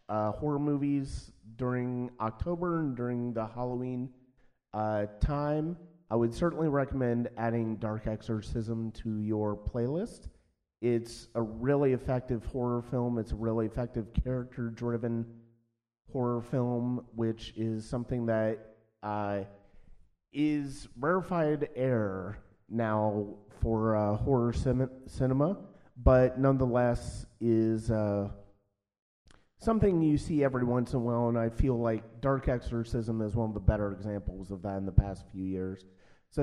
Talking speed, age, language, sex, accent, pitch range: 130 wpm, 30-49, English, male, American, 110-135 Hz